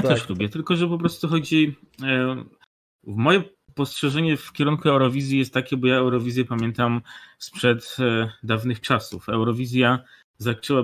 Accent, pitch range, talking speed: native, 110-135 Hz, 135 wpm